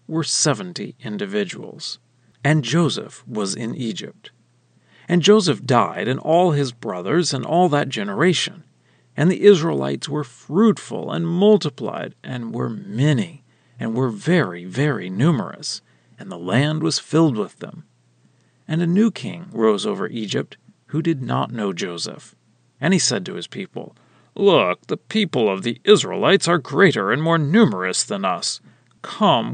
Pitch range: 130-190 Hz